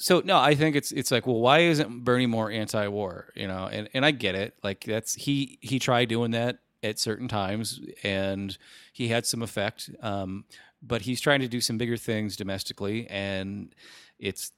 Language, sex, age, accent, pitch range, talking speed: English, male, 30-49, American, 100-125 Hz, 195 wpm